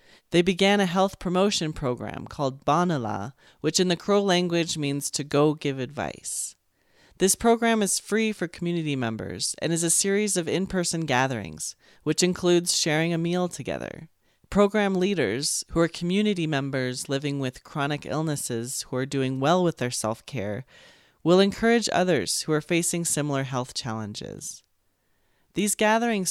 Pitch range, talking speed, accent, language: 130-180 Hz, 150 wpm, American, English